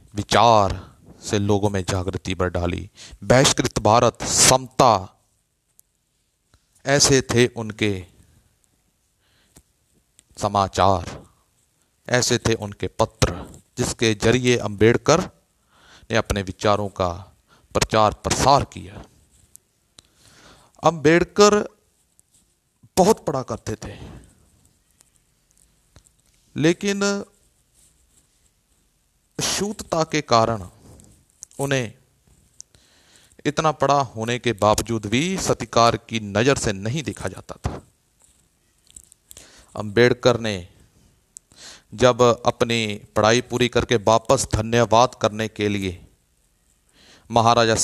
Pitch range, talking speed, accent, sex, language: 100-135 Hz, 80 wpm, native, male, Hindi